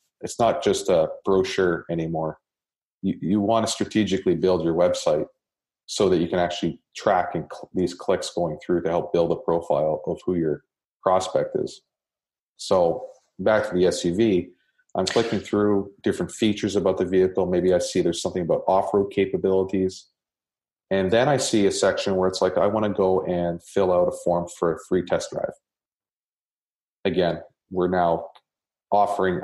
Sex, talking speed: male, 165 wpm